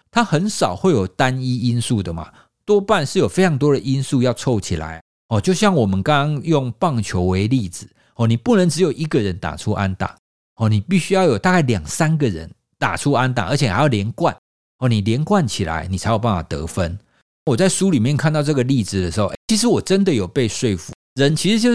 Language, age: Chinese, 50-69